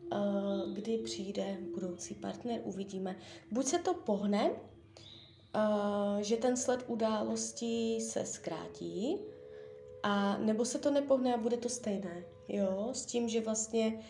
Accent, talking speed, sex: native, 115 wpm, female